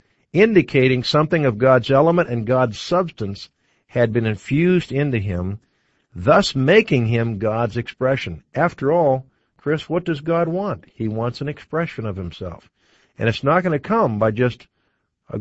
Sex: male